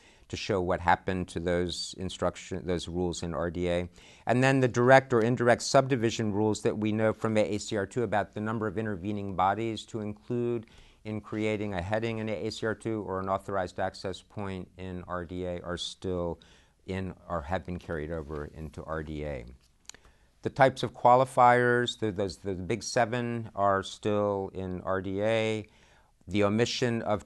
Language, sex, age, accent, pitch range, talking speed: English, male, 50-69, American, 95-115 Hz, 155 wpm